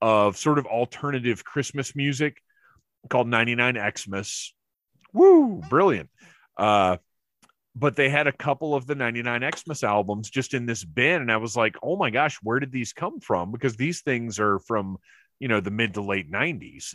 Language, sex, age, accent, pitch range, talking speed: English, male, 30-49, American, 105-135 Hz, 185 wpm